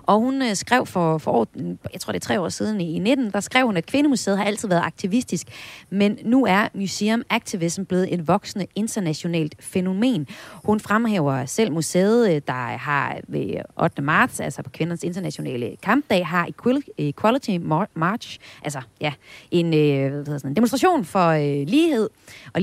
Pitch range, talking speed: 165-225 Hz, 160 wpm